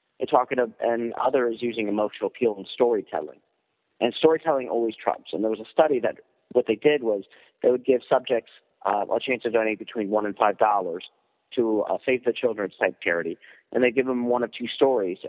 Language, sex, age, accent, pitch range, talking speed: English, male, 50-69, American, 105-130 Hz, 200 wpm